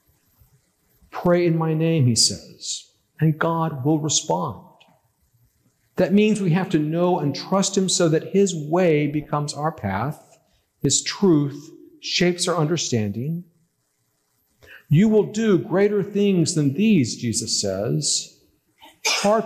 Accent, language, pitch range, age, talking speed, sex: American, English, 135-175 Hz, 50-69, 125 wpm, male